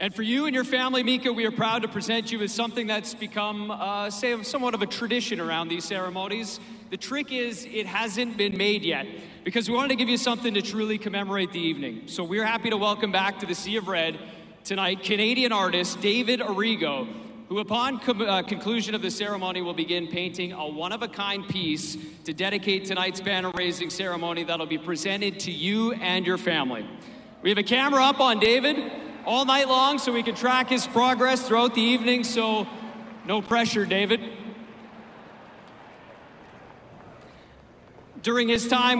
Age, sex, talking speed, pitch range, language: 40-59, male, 175 wpm, 180-225 Hz, English